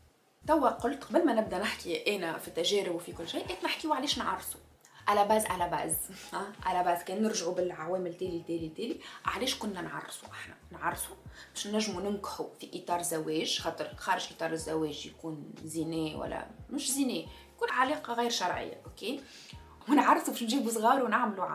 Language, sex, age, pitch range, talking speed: Arabic, female, 20-39, 170-240 Hz, 160 wpm